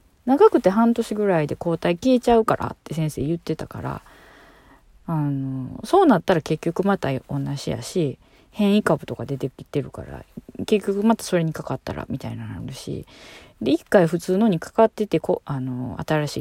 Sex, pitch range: female, 140-230 Hz